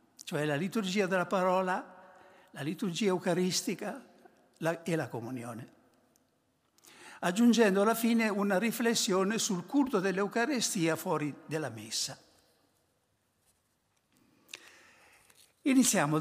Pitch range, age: 155-230 Hz, 60-79